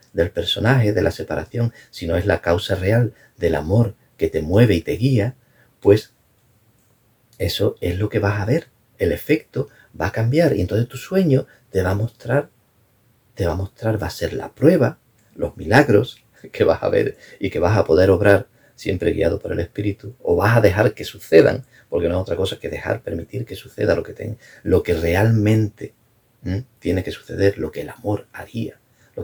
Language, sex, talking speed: English, male, 195 wpm